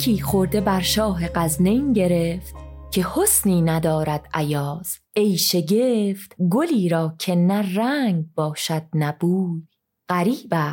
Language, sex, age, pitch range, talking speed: Persian, female, 30-49, 160-210 Hz, 110 wpm